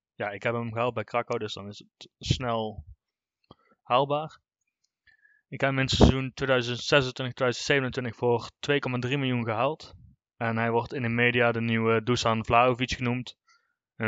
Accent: Dutch